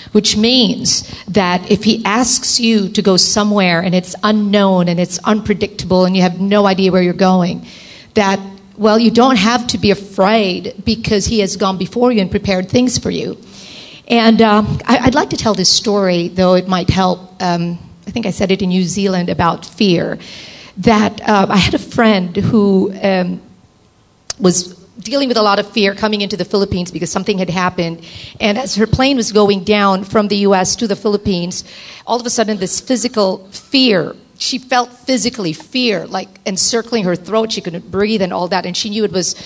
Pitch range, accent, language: 185-230 Hz, American, English